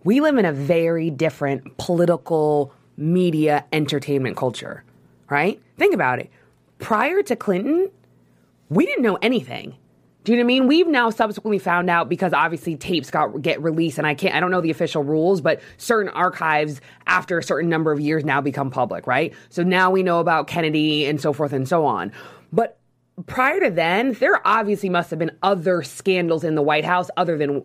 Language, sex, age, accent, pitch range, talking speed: English, female, 20-39, American, 155-225 Hz, 195 wpm